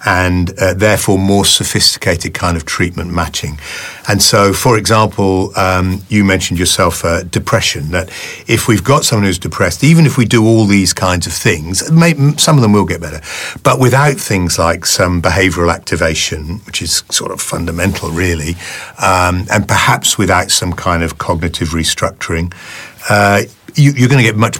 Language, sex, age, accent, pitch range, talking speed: English, male, 50-69, British, 90-120 Hz, 170 wpm